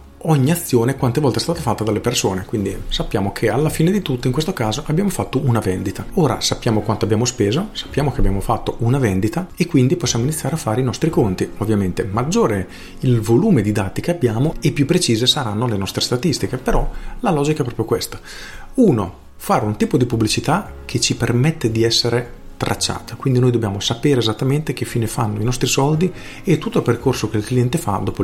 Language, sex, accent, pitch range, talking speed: Italian, male, native, 105-140 Hz, 205 wpm